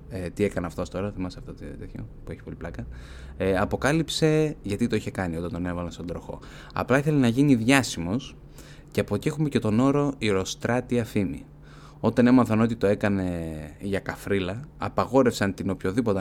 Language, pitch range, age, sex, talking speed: Greek, 90-125 Hz, 20-39, male, 180 wpm